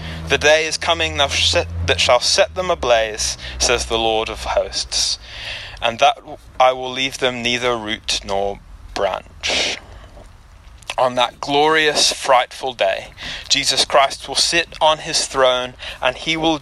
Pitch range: 90-140 Hz